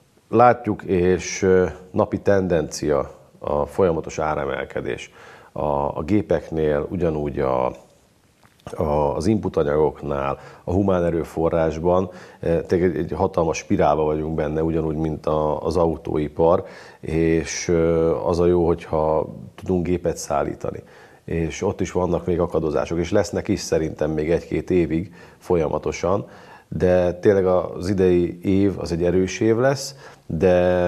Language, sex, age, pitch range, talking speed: Hungarian, male, 40-59, 85-100 Hz, 115 wpm